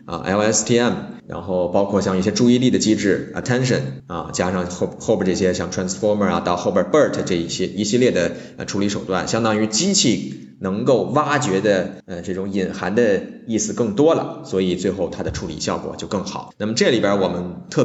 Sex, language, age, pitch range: male, Chinese, 20-39, 95-135 Hz